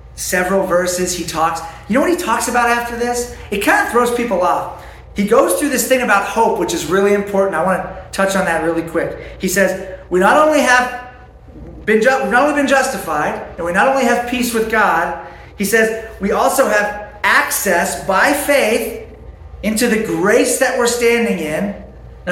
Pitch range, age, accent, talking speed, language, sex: 175-235 Hz, 30-49, American, 190 wpm, English, male